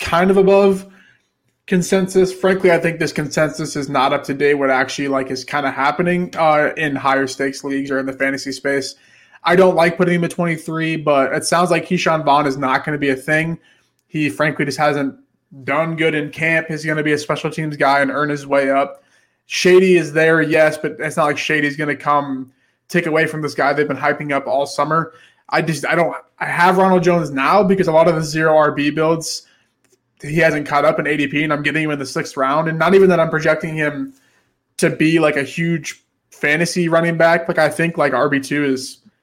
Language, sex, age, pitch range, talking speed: English, male, 20-39, 140-165 Hz, 225 wpm